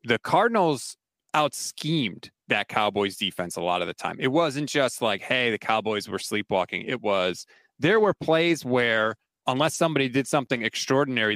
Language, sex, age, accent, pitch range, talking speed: English, male, 30-49, American, 125-165 Hz, 165 wpm